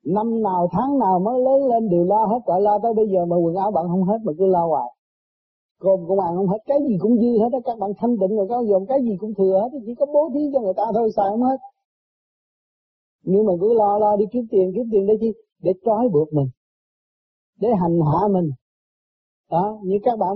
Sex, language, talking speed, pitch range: male, Vietnamese, 245 wpm, 180-235 Hz